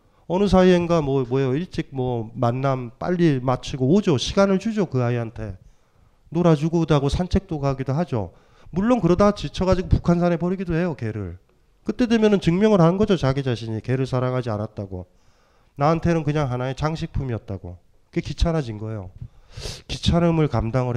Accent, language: native, Korean